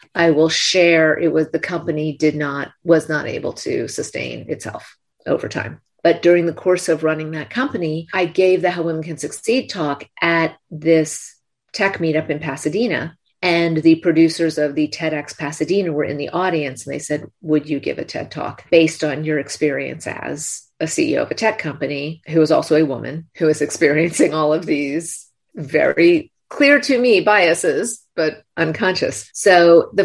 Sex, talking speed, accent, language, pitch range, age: female, 180 wpm, American, English, 150-175 Hz, 40-59